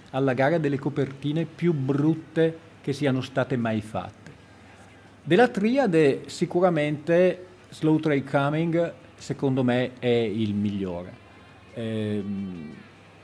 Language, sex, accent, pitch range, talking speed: Italian, male, native, 110-145 Hz, 105 wpm